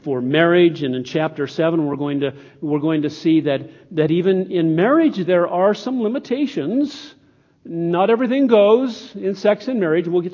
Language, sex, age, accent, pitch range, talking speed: English, male, 50-69, American, 145-200 Hz, 180 wpm